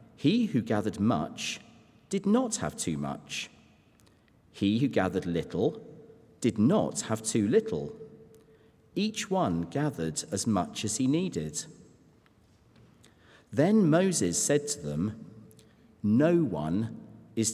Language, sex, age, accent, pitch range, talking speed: English, male, 50-69, British, 90-140 Hz, 115 wpm